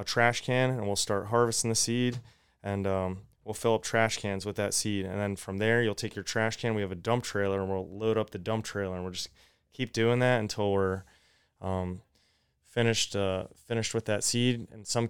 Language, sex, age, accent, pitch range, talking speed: English, male, 30-49, American, 100-115 Hz, 225 wpm